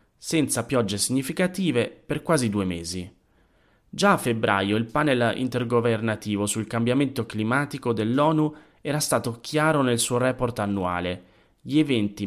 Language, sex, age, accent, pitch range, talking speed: Italian, male, 30-49, native, 100-135 Hz, 125 wpm